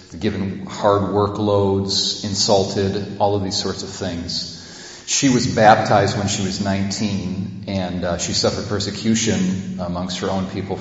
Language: English